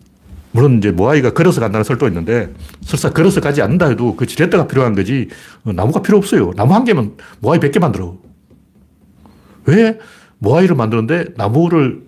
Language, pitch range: Korean, 105-175 Hz